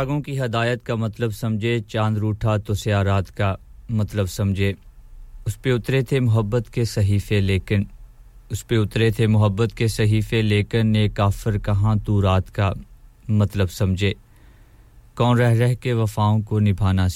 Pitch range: 100-115 Hz